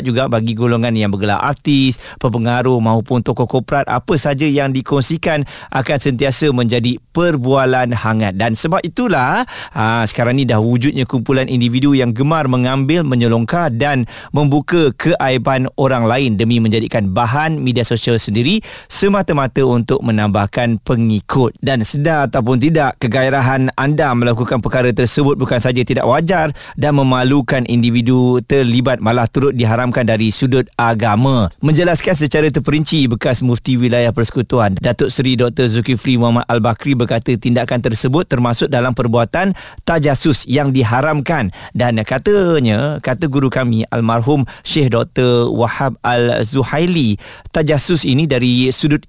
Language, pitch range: Malay, 120-145 Hz